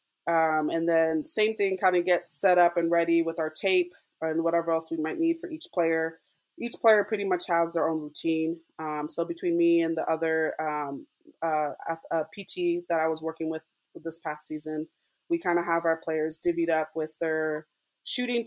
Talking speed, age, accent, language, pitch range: 200 wpm, 20-39, American, English, 165-185 Hz